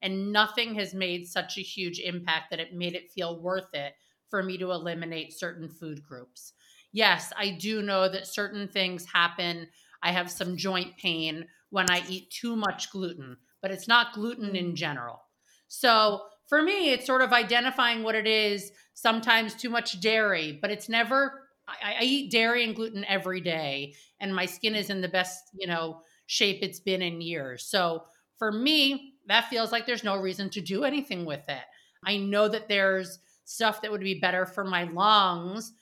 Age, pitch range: 30-49, 180-225 Hz